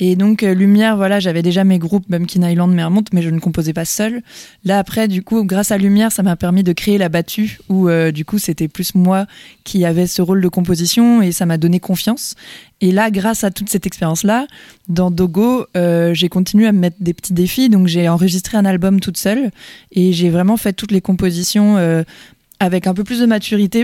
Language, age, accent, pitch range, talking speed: French, 20-39, French, 175-210 Hz, 225 wpm